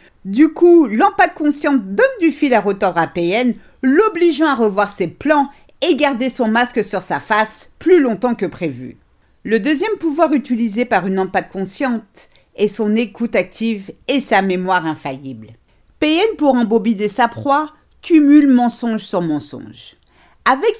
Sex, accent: female, French